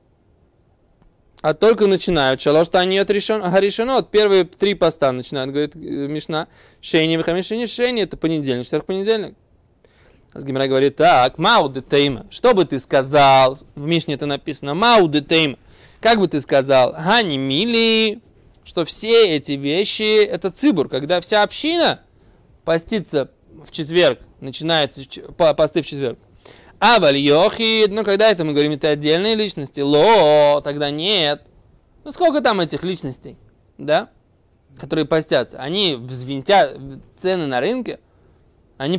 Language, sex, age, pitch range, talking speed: Russian, male, 20-39, 135-200 Hz, 130 wpm